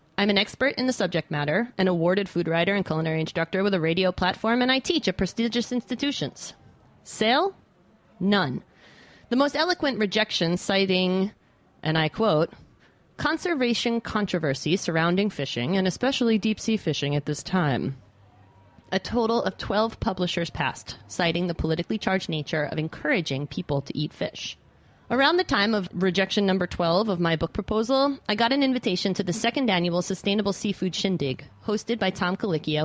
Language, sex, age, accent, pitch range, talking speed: English, female, 30-49, American, 165-225 Hz, 165 wpm